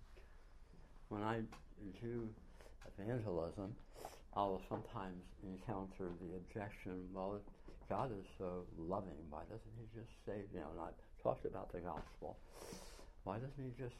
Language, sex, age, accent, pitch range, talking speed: English, male, 60-79, American, 80-110 Hz, 135 wpm